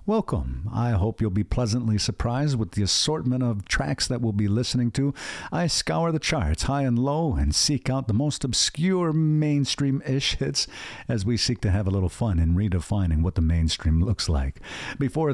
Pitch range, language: 95-135 Hz, English